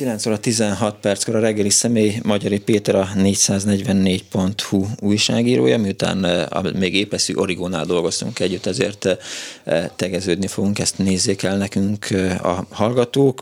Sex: male